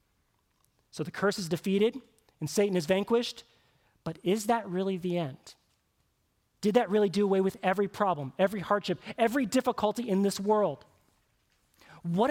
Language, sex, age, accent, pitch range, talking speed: English, male, 30-49, American, 150-195 Hz, 150 wpm